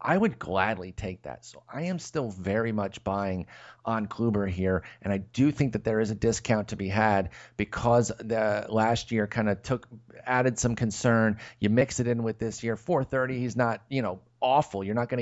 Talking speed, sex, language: 215 wpm, male, English